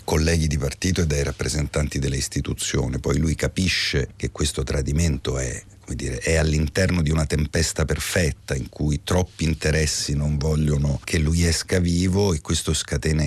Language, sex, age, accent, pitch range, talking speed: Italian, male, 50-69, native, 75-95 Hz, 165 wpm